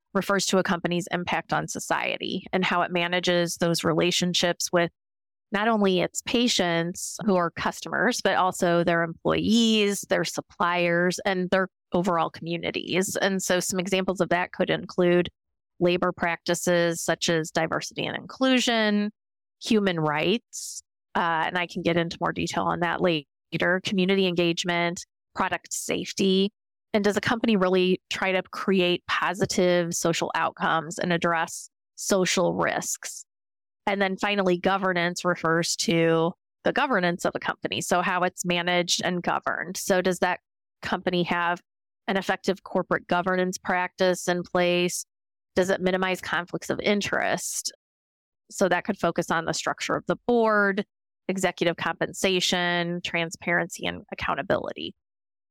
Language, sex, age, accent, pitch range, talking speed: English, female, 30-49, American, 170-190 Hz, 140 wpm